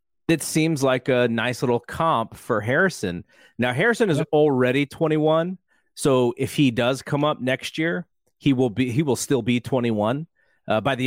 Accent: American